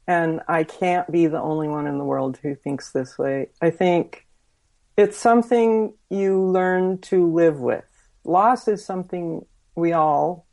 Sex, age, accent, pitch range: female, 50-69, American, 155-185 Hz